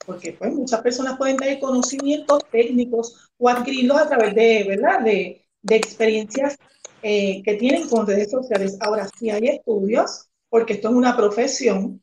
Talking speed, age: 160 wpm, 40-59